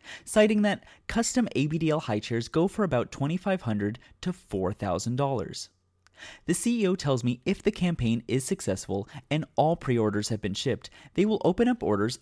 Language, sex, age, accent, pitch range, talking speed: English, male, 30-49, American, 105-170 Hz, 160 wpm